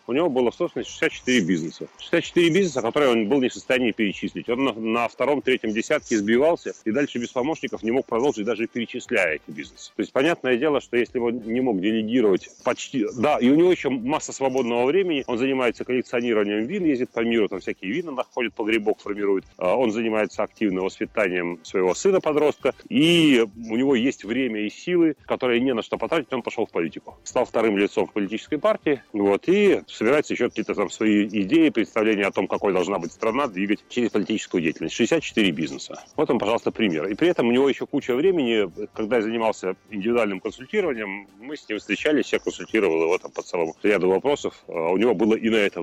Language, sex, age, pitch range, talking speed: Russian, male, 40-59, 105-150 Hz, 195 wpm